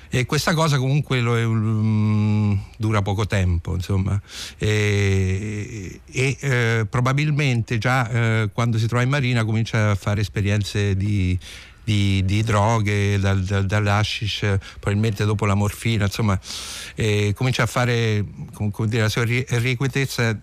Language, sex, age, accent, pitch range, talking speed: Italian, male, 60-79, native, 100-120 Hz, 130 wpm